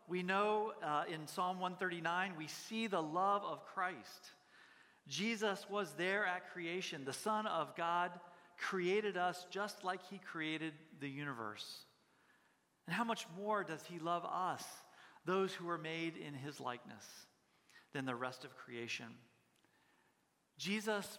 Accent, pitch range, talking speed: American, 135-180 Hz, 140 wpm